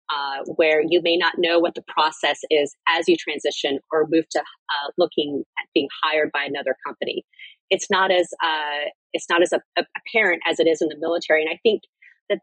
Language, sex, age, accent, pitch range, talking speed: English, female, 30-49, American, 160-215 Hz, 210 wpm